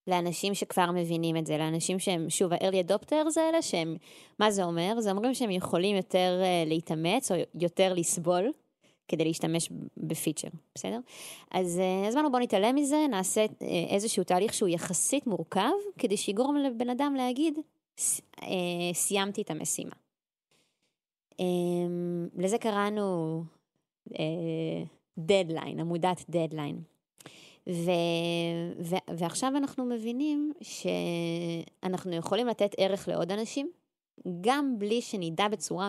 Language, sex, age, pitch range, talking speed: Hebrew, female, 20-39, 170-225 Hz, 120 wpm